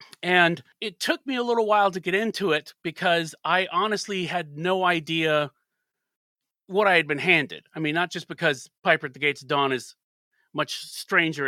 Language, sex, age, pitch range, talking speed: English, male, 40-59, 145-190 Hz, 190 wpm